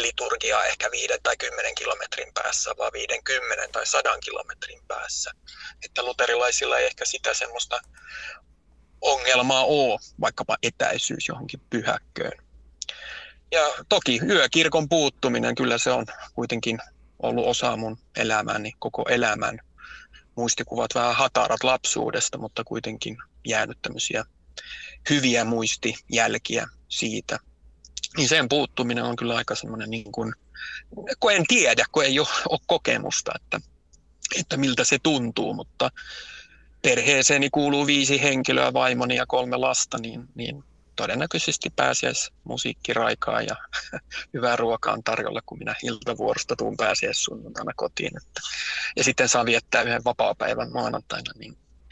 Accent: native